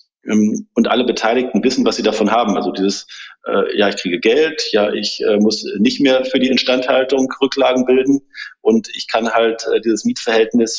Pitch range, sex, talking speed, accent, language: 110-130 Hz, male, 185 wpm, German, German